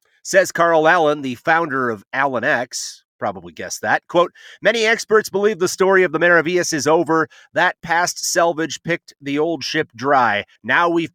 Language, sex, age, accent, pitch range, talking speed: English, male, 30-49, American, 140-190 Hz, 170 wpm